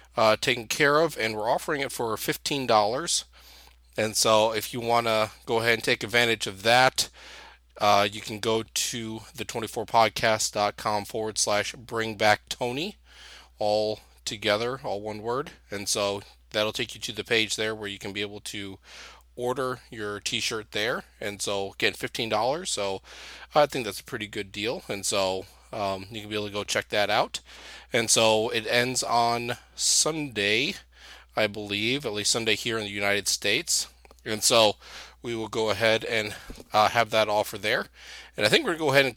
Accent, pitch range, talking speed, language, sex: American, 105-120 Hz, 185 wpm, English, male